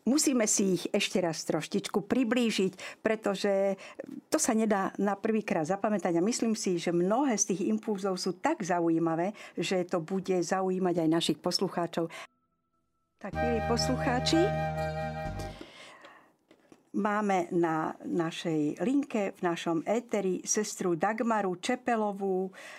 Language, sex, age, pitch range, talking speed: Slovak, female, 50-69, 180-225 Hz, 120 wpm